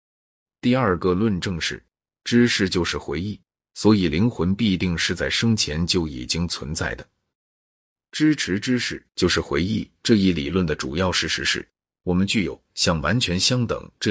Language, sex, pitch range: Chinese, male, 80-100 Hz